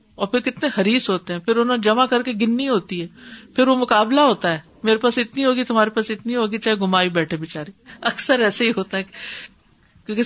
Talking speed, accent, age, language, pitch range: 210 wpm, Indian, 50-69, English, 180-240 Hz